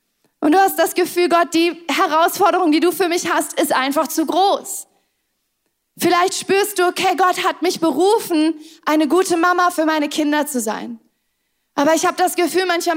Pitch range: 310-370 Hz